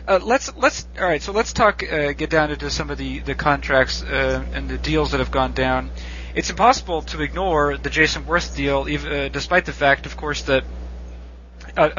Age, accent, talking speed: 40-59, American, 210 wpm